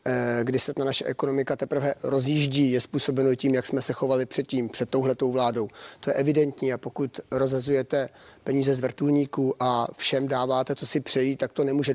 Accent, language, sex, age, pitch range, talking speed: native, Czech, male, 30-49, 130-140 Hz, 185 wpm